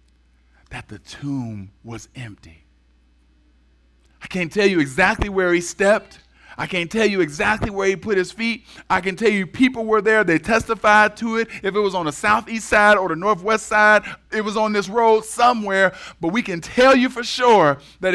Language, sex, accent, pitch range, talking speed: English, male, American, 145-210 Hz, 195 wpm